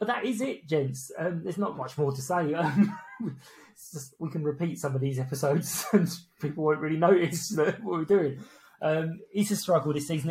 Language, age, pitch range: English, 20-39, 130-165 Hz